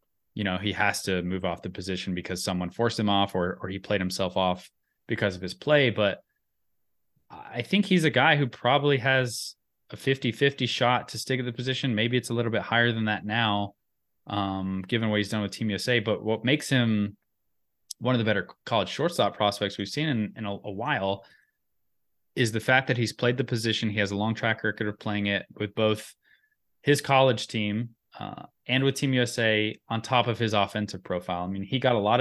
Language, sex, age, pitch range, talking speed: English, male, 20-39, 100-120 Hz, 215 wpm